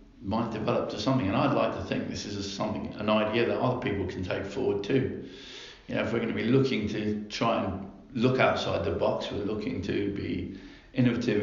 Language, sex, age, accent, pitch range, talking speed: English, male, 50-69, British, 100-120 Hz, 215 wpm